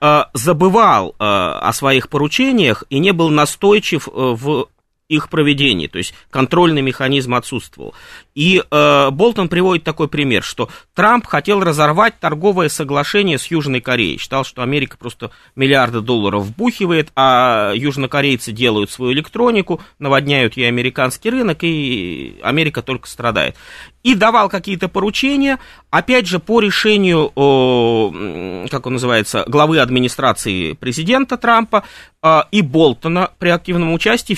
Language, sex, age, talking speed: Russian, male, 30-49, 125 wpm